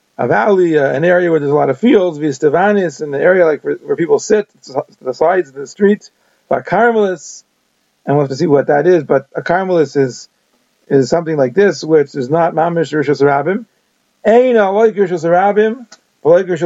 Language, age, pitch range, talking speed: English, 40-59, 160-195 Hz, 185 wpm